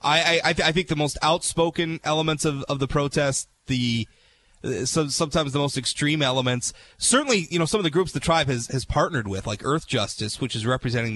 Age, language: 30-49, English